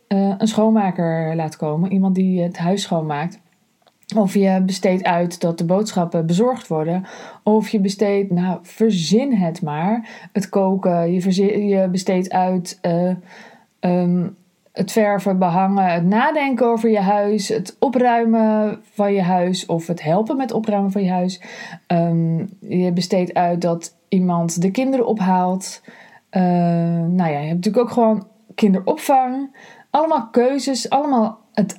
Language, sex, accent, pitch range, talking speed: Dutch, female, Dutch, 180-230 Hz, 140 wpm